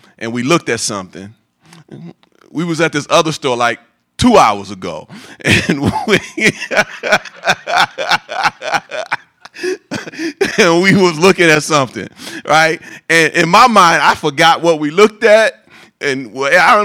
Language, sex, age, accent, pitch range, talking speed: English, male, 30-49, American, 165-230 Hz, 125 wpm